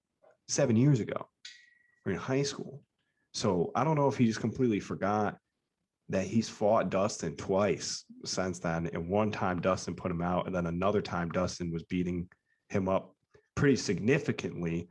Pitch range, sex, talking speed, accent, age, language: 95-135 Hz, male, 160 wpm, American, 30-49, English